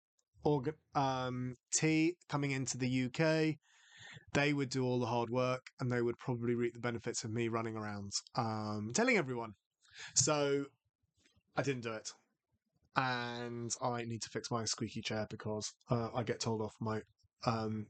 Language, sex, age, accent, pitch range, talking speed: English, male, 20-39, British, 120-155 Hz, 165 wpm